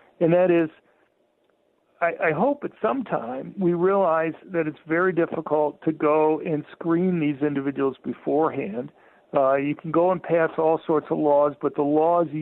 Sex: male